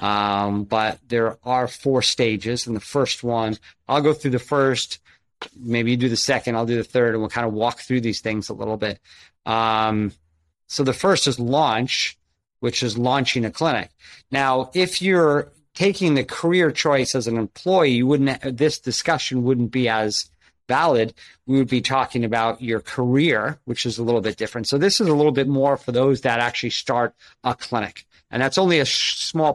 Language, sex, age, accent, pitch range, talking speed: English, male, 40-59, American, 115-145 Hz, 190 wpm